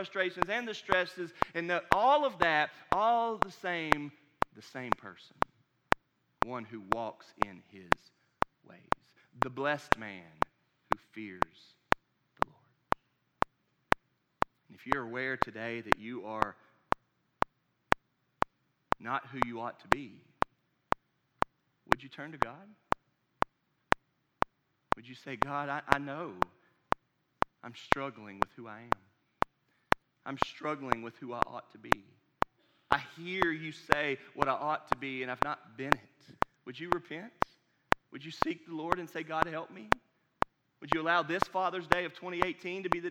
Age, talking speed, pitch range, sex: 40-59, 145 wpm, 135-180 Hz, male